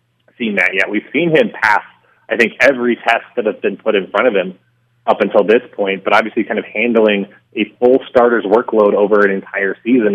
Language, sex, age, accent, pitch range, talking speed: English, male, 30-49, American, 100-110 Hz, 215 wpm